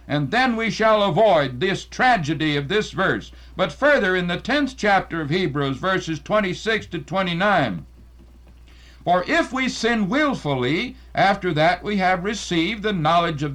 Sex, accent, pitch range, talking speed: male, American, 155-225 Hz, 155 wpm